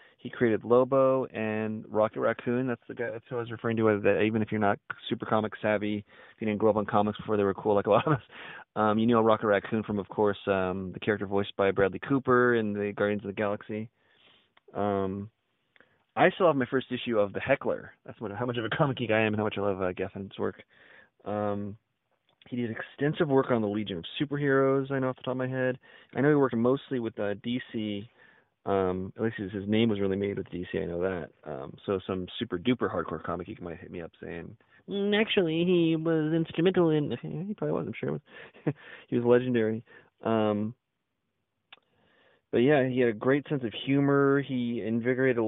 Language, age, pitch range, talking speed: English, 20-39, 105-130 Hz, 220 wpm